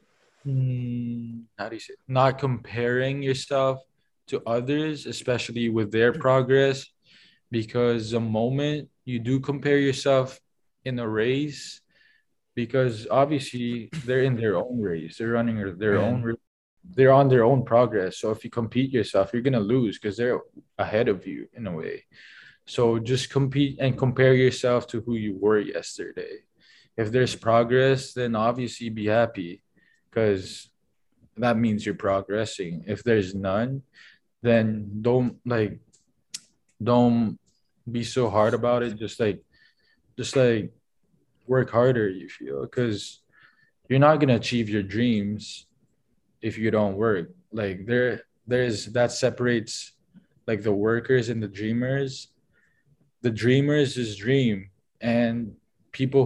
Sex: male